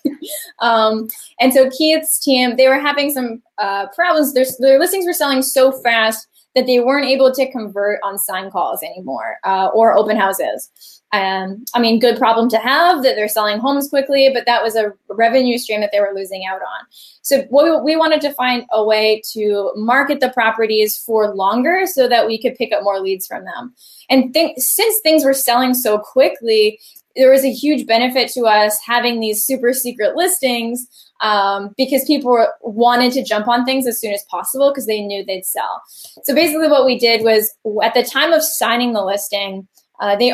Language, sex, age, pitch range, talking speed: English, female, 10-29, 210-270 Hz, 200 wpm